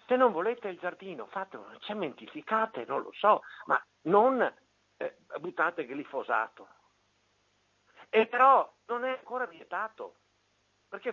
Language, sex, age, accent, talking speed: Italian, male, 50-69, native, 130 wpm